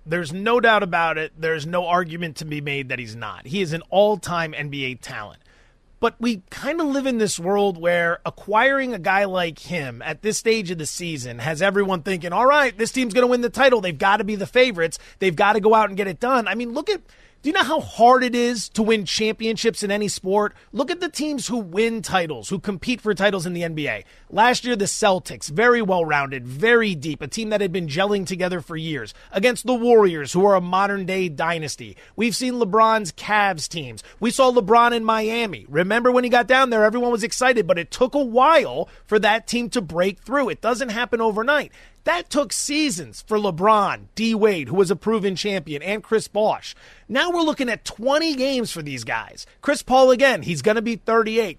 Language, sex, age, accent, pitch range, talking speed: English, male, 30-49, American, 180-245 Hz, 220 wpm